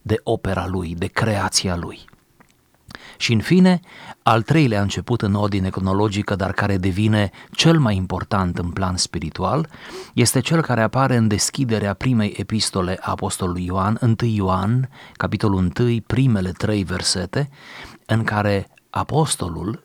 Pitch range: 95-115 Hz